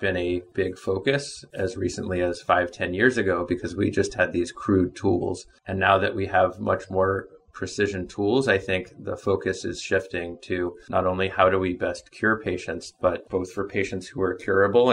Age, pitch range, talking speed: 30-49, 95-105 Hz, 195 wpm